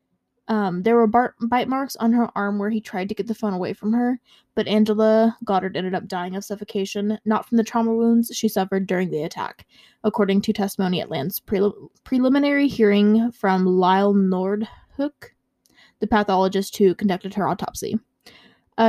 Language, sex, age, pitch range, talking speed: English, female, 20-39, 190-225 Hz, 175 wpm